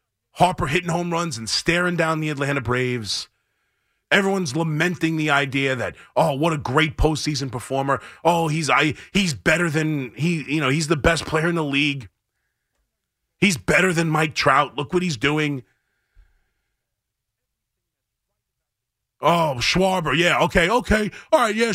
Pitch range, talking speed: 125-175 Hz, 150 wpm